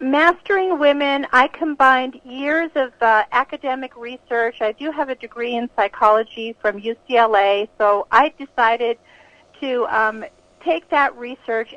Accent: American